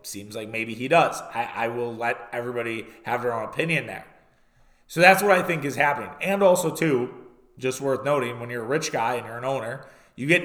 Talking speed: 225 wpm